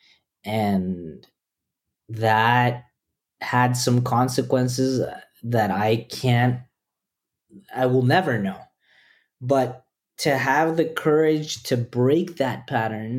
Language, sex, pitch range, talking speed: English, male, 125-150 Hz, 95 wpm